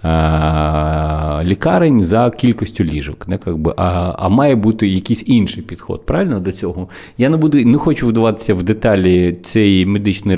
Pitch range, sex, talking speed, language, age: 90-115 Hz, male, 150 wpm, Ukrainian, 30-49